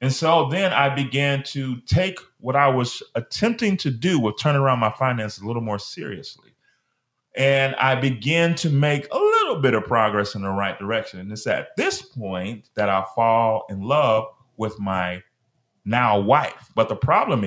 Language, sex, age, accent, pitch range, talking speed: English, male, 30-49, American, 110-170 Hz, 180 wpm